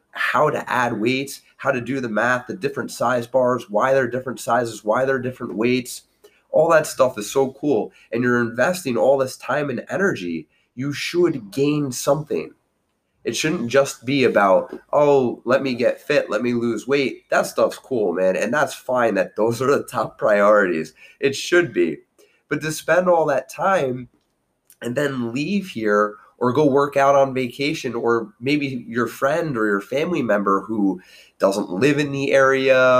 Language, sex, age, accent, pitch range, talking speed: English, male, 20-39, American, 115-140 Hz, 180 wpm